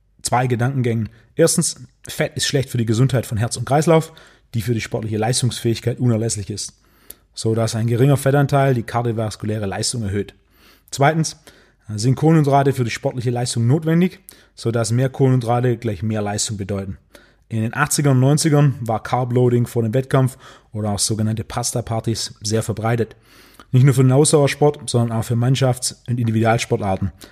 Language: German